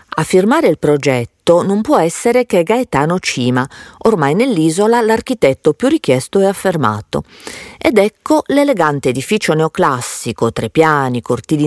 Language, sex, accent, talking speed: Italian, female, native, 130 wpm